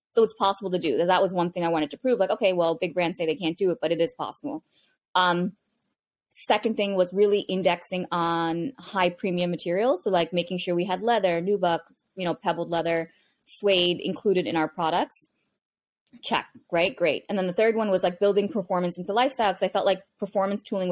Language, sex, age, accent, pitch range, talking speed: English, female, 20-39, American, 170-200 Hz, 215 wpm